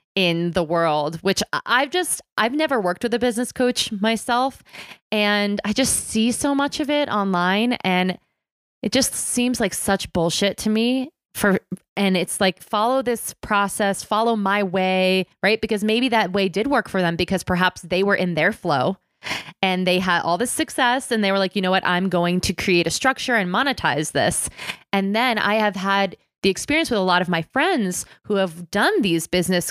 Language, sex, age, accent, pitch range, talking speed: English, female, 20-39, American, 170-215 Hz, 200 wpm